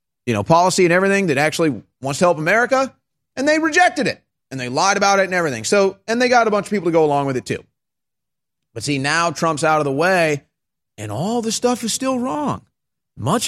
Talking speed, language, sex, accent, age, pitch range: 230 wpm, English, male, American, 30-49, 110-175 Hz